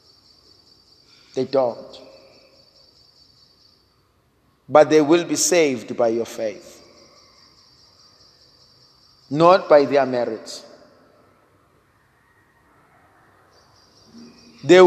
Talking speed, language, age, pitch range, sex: 60 wpm, English, 50-69, 140-205 Hz, male